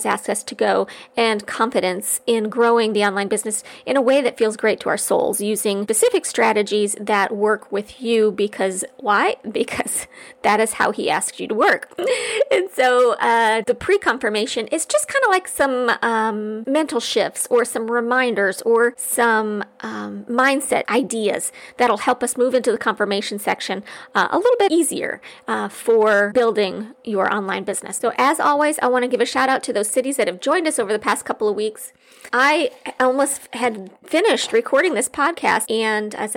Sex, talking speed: female, 185 wpm